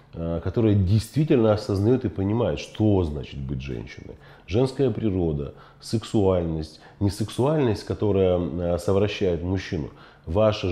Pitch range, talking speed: 85-110 Hz, 100 wpm